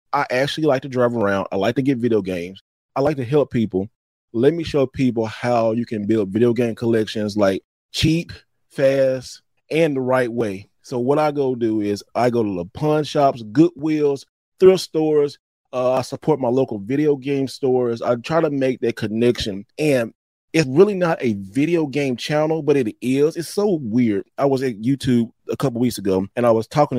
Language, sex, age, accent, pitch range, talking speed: English, male, 30-49, American, 110-135 Hz, 200 wpm